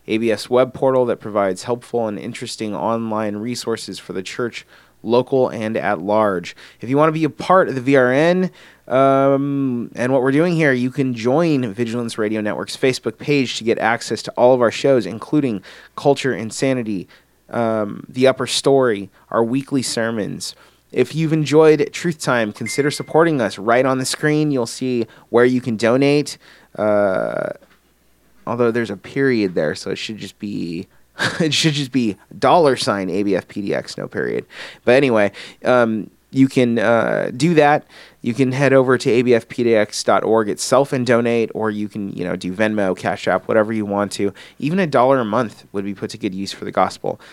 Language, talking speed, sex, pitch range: English, 180 wpm, male, 110-145 Hz